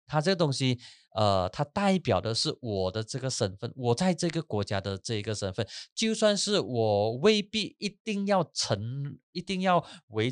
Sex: male